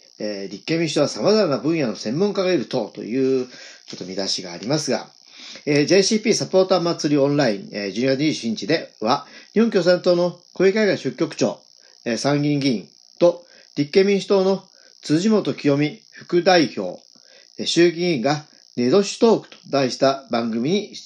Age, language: 40-59, Japanese